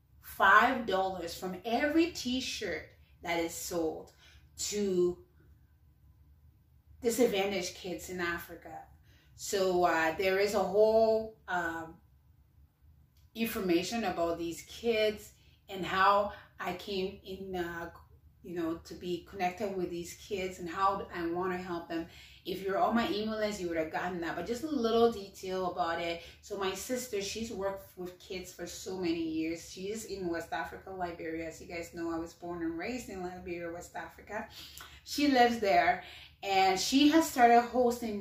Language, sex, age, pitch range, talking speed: English, female, 30-49, 170-215 Hz, 155 wpm